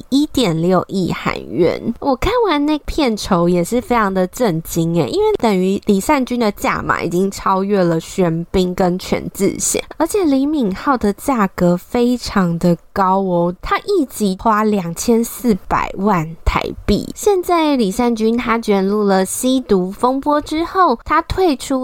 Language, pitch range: Chinese, 185-255 Hz